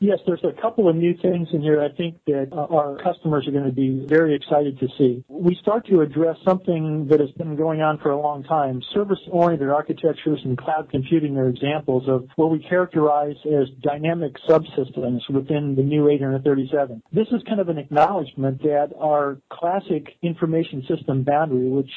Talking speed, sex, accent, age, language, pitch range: 185 wpm, male, American, 50-69, English, 140-170 Hz